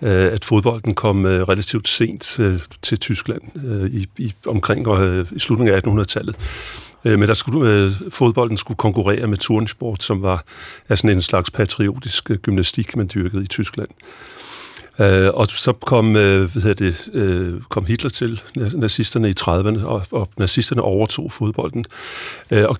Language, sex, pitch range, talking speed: Danish, male, 100-120 Hz, 125 wpm